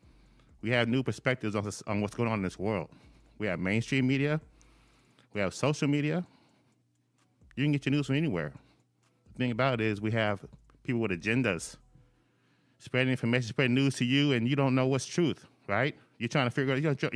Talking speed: 190 wpm